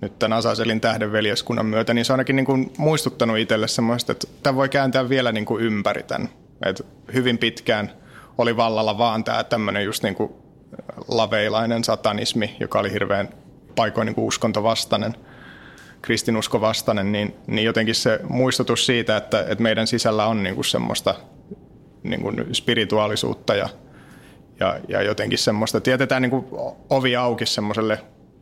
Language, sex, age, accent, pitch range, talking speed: Finnish, male, 30-49, native, 110-130 Hz, 145 wpm